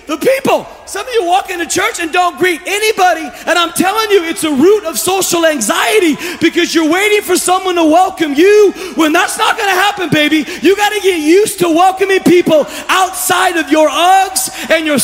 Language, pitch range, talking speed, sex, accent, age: English, 305-365 Hz, 205 wpm, male, American, 30-49